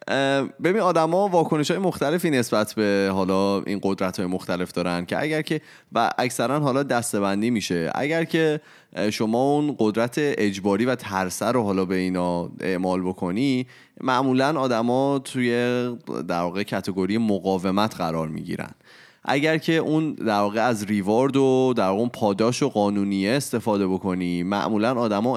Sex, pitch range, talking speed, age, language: male, 100-135 Hz, 140 wpm, 20-39, Persian